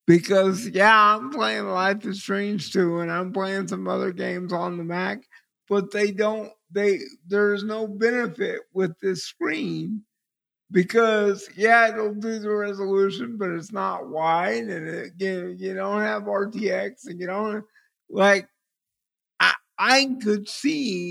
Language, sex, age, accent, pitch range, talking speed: English, male, 50-69, American, 190-235 Hz, 150 wpm